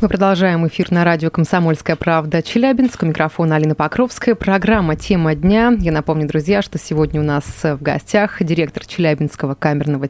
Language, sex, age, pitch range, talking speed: Russian, female, 20-39, 155-210 Hz, 155 wpm